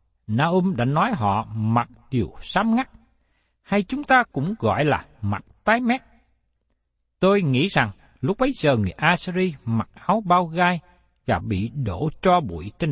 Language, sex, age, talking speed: Vietnamese, male, 60-79, 165 wpm